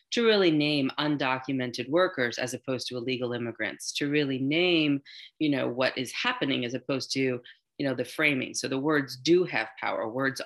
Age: 30-49